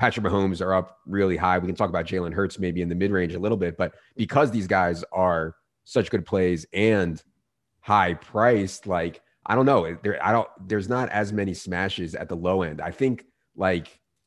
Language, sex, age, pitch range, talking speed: English, male, 30-49, 85-100 Hz, 205 wpm